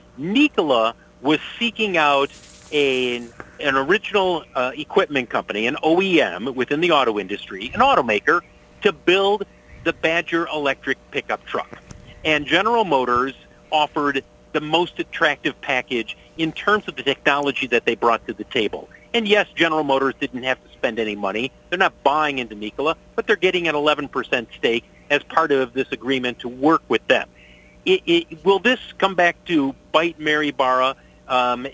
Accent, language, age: American, English, 50-69